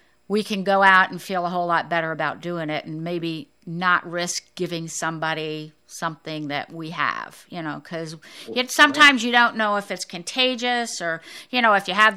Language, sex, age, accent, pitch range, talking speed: English, female, 50-69, American, 165-200 Hz, 190 wpm